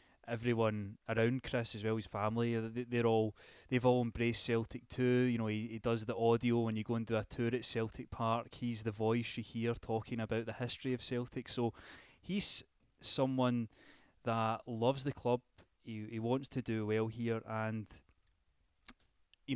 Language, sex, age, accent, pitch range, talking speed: English, male, 20-39, British, 110-125 Hz, 175 wpm